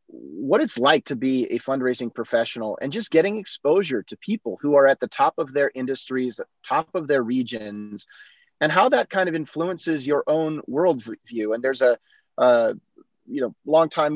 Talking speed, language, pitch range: 185 wpm, English, 125-155 Hz